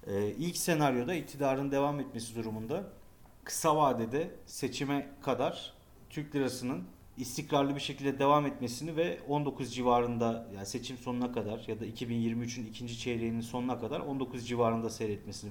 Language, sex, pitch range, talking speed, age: Turkish, male, 115-140 Hz, 130 wpm, 40-59